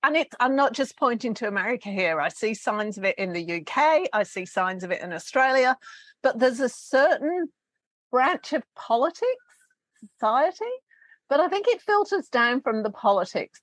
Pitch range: 210-320 Hz